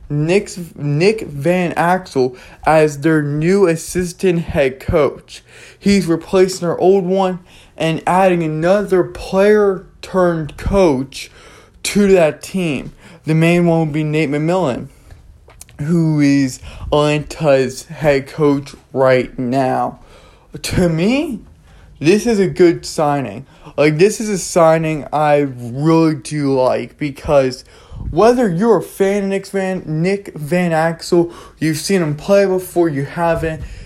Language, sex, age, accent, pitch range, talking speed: English, male, 20-39, American, 145-185 Hz, 125 wpm